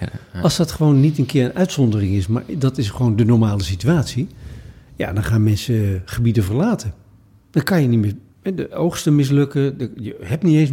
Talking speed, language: 195 wpm, Dutch